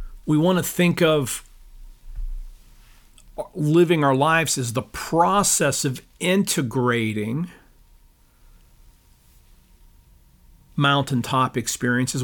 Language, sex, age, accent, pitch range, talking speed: English, male, 50-69, American, 120-150 Hz, 75 wpm